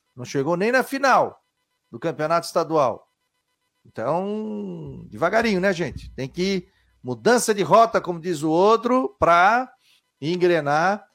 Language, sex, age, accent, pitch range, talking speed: Portuguese, male, 40-59, Brazilian, 165-220 Hz, 130 wpm